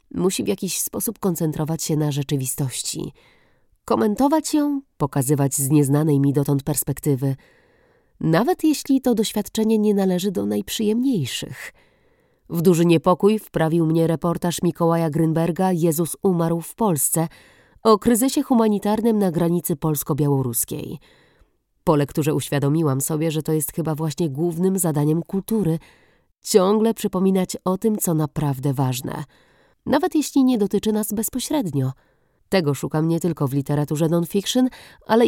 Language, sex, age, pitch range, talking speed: Polish, female, 30-49, 150-210 Hz, 130 wpm